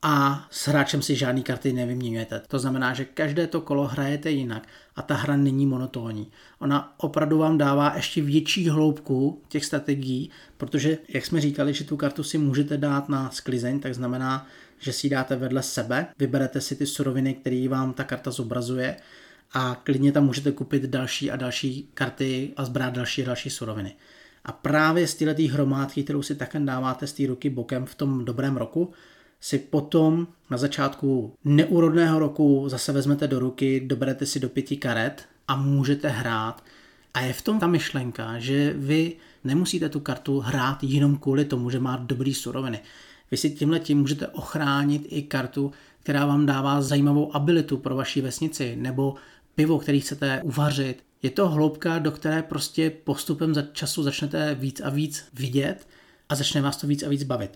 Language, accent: Czech, native